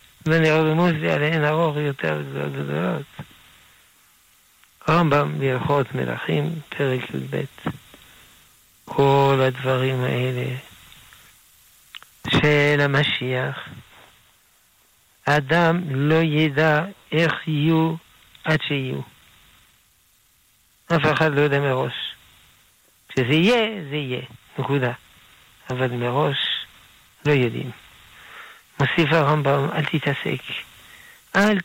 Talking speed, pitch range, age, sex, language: 80 wpm, 125-155 Hz, 60-79, male, Hebrew